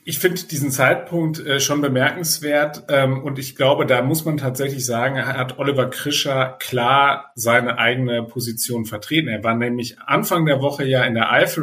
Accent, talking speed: German, 165 wpm